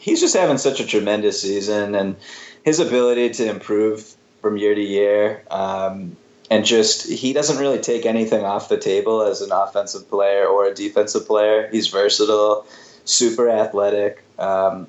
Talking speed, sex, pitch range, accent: 160 wpm, male, 100-125 Hz, American